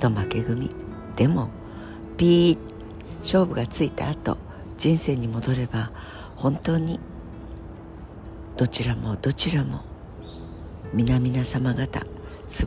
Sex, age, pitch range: female, 60-79, 100-145 Hz